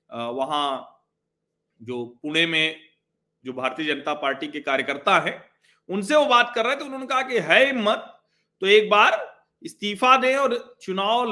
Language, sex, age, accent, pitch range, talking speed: Hindi, male, 40-59, native, 155-240 Hz, 155 wpm